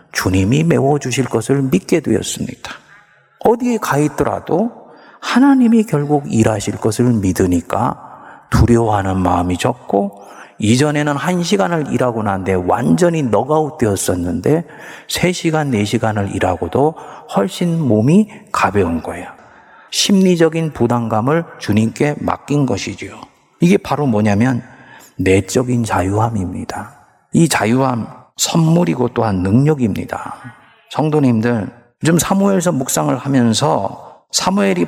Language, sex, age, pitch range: Korean, male, 40-59, 115-190 Hz